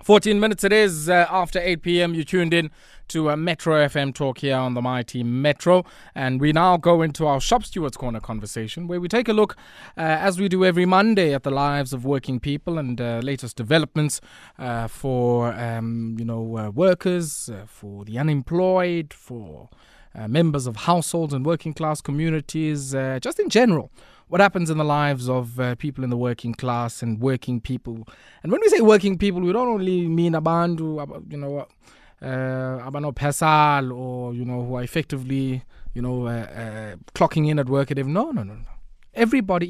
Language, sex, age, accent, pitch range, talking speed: English, male, 20-39, South African, 125-170 Hz, 190 wpm